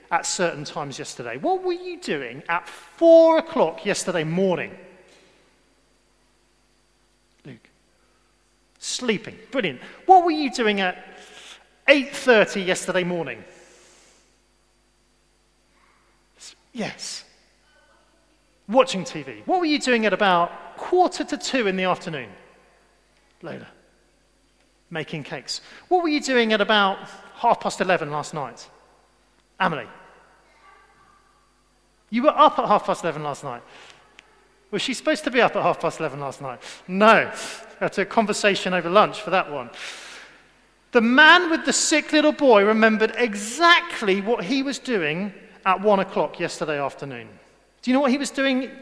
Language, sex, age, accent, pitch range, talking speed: English, male, 40-59, British, 185-285 Hz, 135 wpm